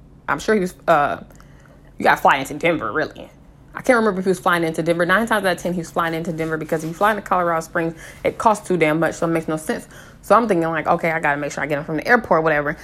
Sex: female